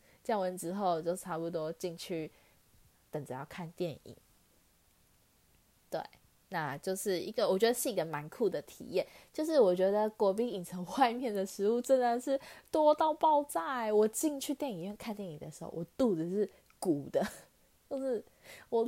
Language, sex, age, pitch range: Chinese, female, 20-39, 165-225 Hz